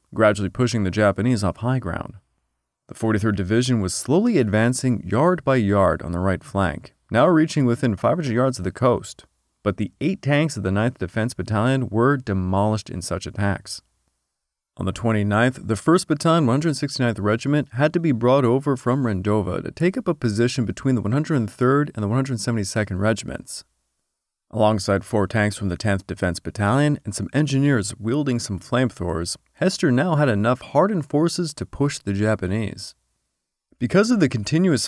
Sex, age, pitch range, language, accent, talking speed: male, 30-49, 100-135 Hz, English, American, 165 wpm